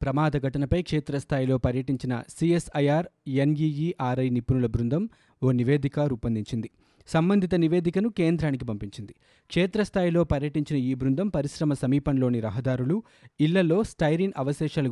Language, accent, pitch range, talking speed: Telugu, native, 125-155 Hz, 100 wpm